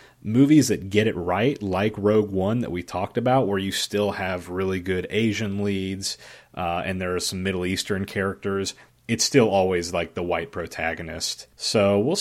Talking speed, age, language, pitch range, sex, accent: 180 wpm, 30-49, English, 85-100 Hz, male, American